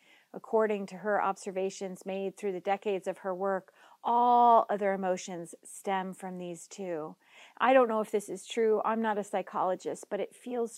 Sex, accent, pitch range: female, American, 185-215 Hz